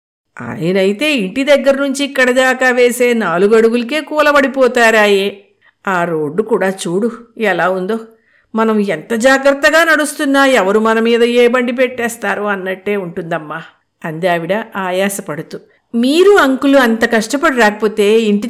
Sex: female